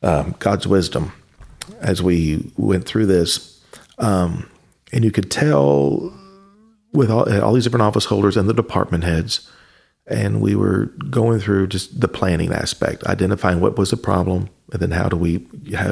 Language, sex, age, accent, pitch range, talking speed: English, male, 40-59, American, 90-115 Hz, 165 wpm